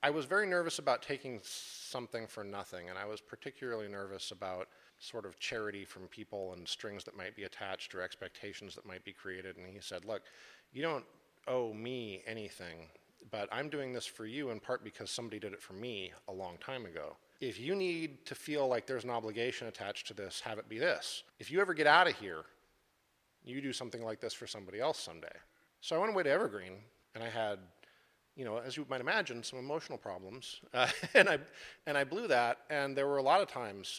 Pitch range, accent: 100-135 Hz, American